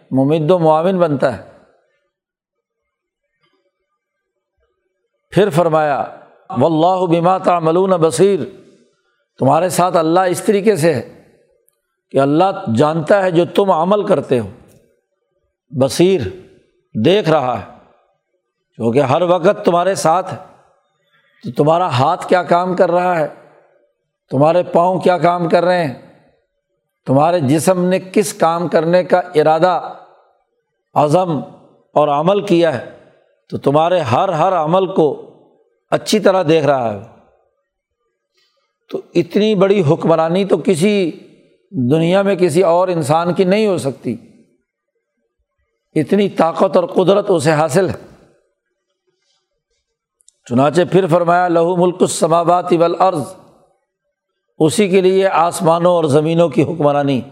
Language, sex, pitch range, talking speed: Urdu, male, 160-195 Hz, 115 wpm